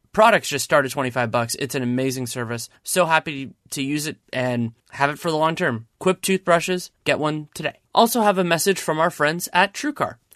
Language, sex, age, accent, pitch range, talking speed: English, male, 30-49, American, 130-180 Hz, 210 wpm